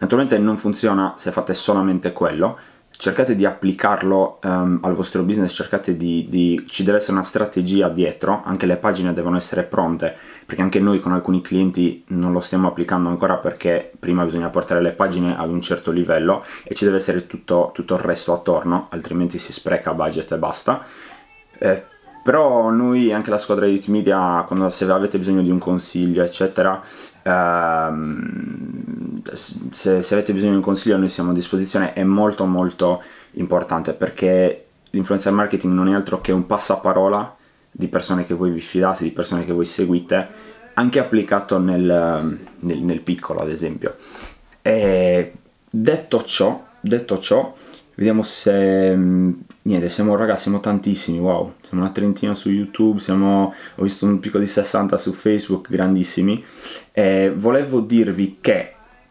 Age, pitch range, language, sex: 20-39, 90-100 Hz, Italian, male